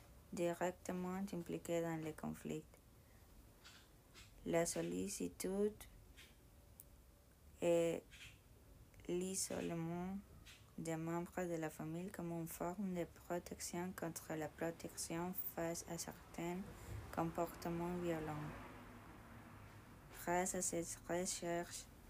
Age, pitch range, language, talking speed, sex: 20-39, 115-180 Hz, French, 85 wpm, female